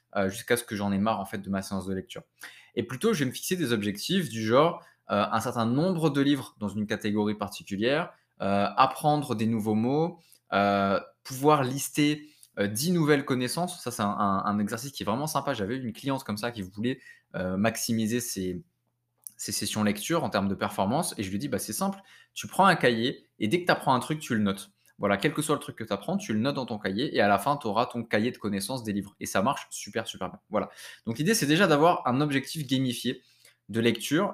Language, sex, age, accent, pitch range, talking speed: French, male, 20-39, French, 105-140 Hz, 240 wpm